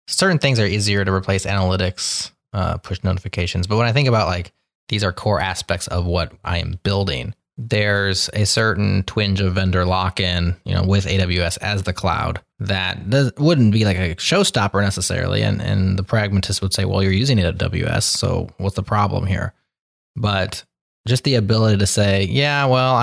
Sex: male